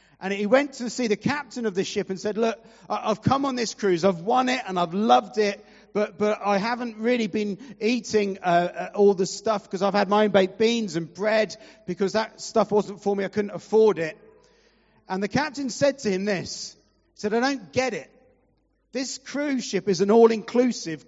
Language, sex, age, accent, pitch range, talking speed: English, male, 40-59, British, 195-245 Hz, 210 wpm